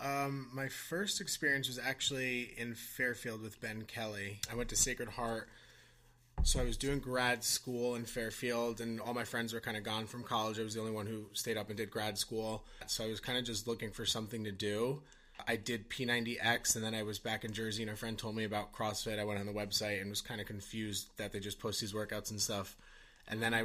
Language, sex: English, male